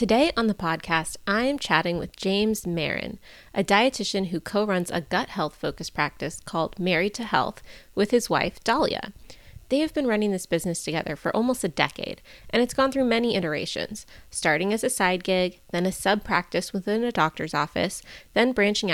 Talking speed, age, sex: 185 wpm, 30-49, female